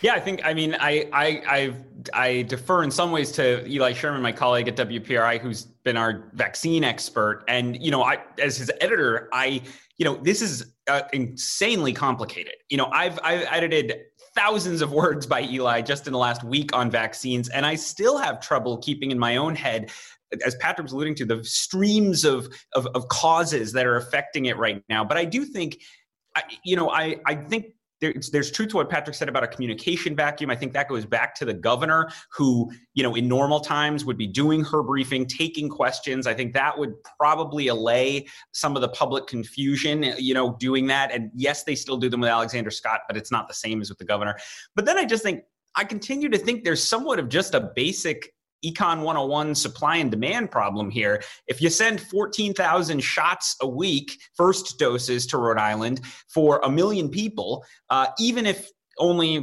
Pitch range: 125-165 Hz